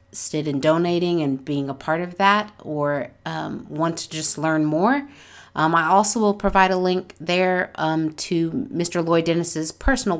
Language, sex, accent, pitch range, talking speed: English, female, American, 155-205 Hz, 175 wpm